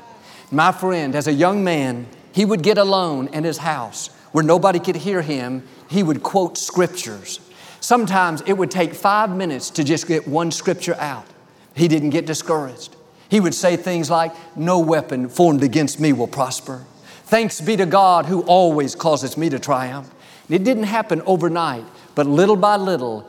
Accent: American